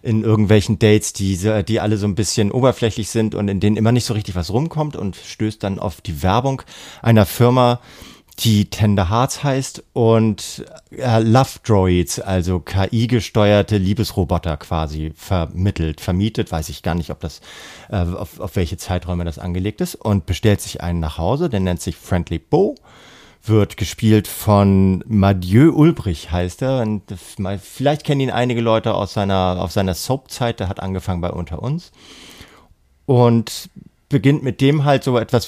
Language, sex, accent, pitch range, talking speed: German, male, German, 90-115 Hz, 160 wpm